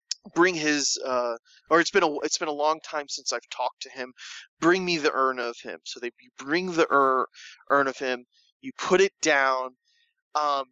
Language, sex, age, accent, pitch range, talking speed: English, male, 20-39, American, 125-175 Hz, 200 wpm